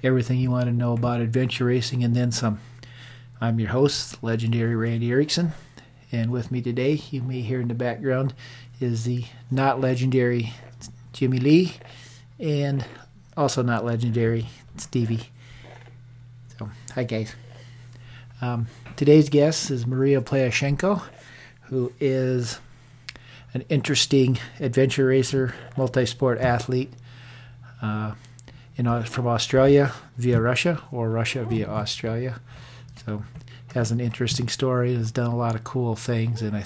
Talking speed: 130 wpm